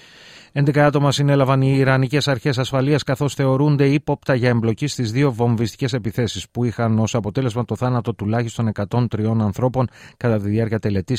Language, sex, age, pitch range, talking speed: Greek, male, 30-49, 105-125 Hz, 150 wpm